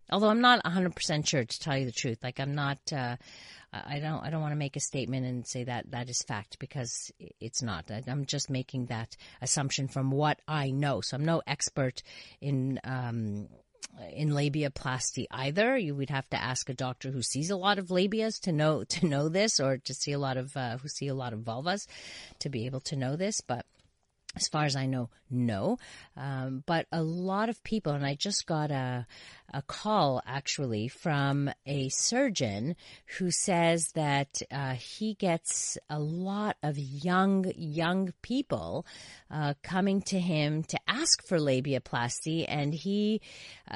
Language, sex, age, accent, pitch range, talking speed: English, female, 40-59, American, 130-175 Hz, 185 wpm